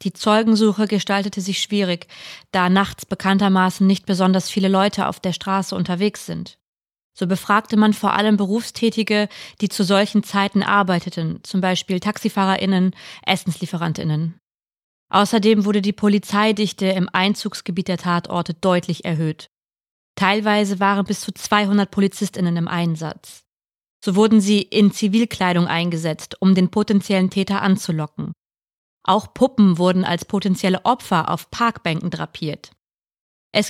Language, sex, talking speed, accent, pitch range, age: German, female, 125 wpm, German, 180-210 Hz, 20-39